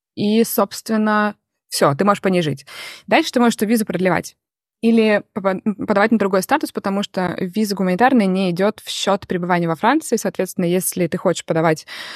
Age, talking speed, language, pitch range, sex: 20-39, 175 wpm, Russian, 175-215 Hz, female